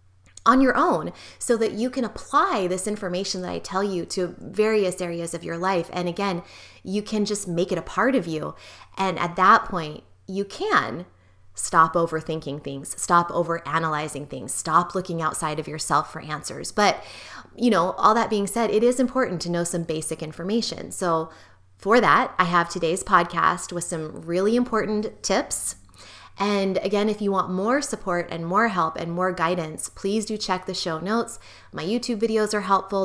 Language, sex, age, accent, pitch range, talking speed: English, female, 20-39, American, 160-210 Hz, 185 wpm